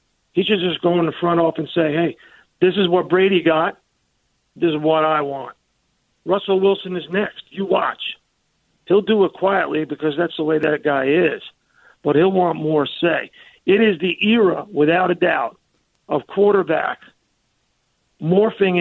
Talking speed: 170 wpm